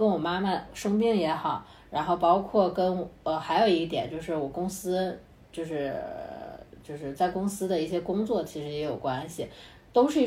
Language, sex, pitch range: Chinese, female, 160-205 Hz